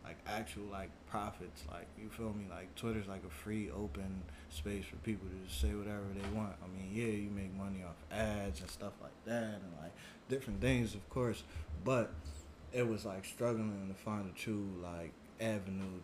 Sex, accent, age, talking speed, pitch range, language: male, American, 20-39, 195 wpm, 85-110 Hz, English